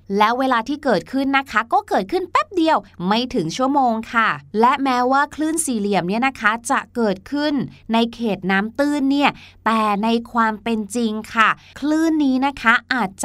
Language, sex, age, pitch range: Thai, female, 20-39, 210-280 Hz